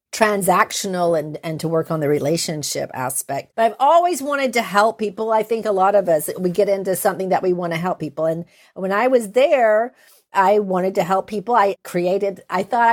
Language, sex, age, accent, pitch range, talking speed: English, female, 50-69, American, 180-220 Hz, 210 wpm